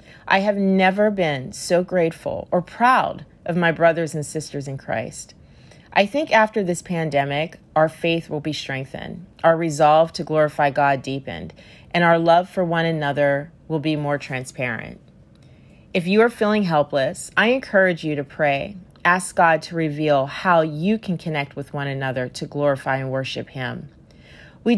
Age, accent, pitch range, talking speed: 40-59, American, 140-185 Hz, 165 wpm